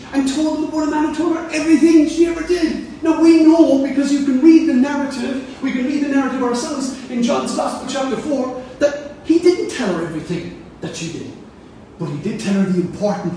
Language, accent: English, British